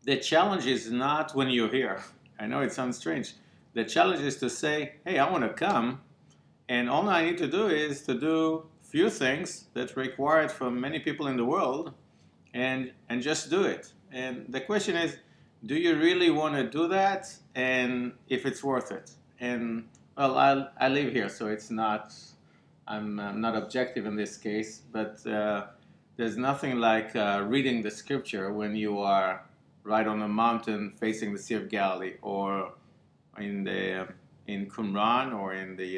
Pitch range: 105-135 Hz